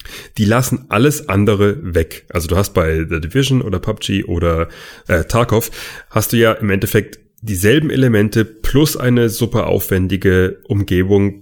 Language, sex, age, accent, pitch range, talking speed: German, male, 30-49, German, 90-115 Hz, 145 wpm